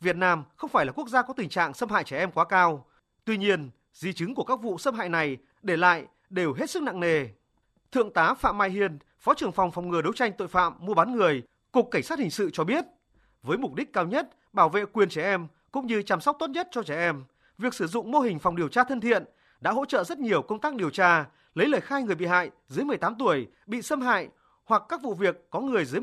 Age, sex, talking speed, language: 30-49, male, 265 wpm, Vietnamese